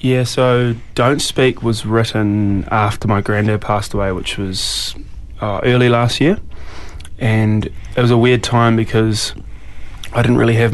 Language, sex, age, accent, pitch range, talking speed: English, male, 20-39, Australian, 105-120 Hz, 155 wpm